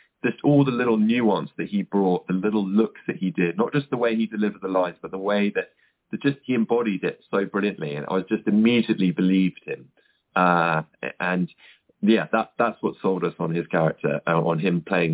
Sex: male